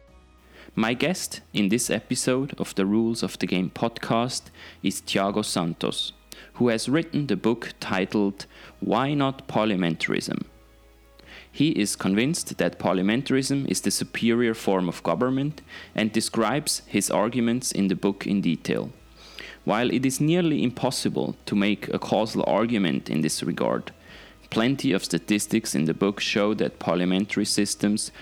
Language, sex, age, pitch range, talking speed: English, male, 30-49, 95-120 Hz, 140 wpm